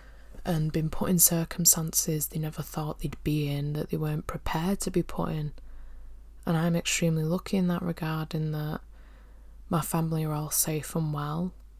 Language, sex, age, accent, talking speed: English, female, 10-29, British, 180 wpm